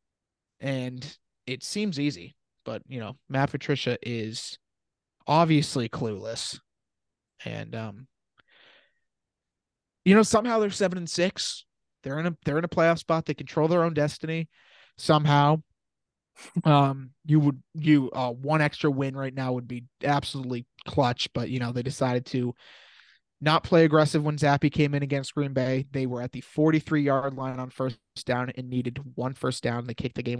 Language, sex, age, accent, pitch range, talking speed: English, male, 30-49, American, 125-155 Hz, 165 wpm